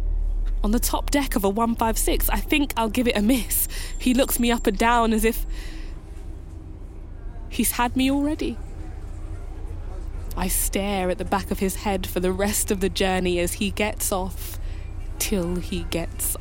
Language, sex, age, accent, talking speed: English, female, 10-29, British, 170 wpm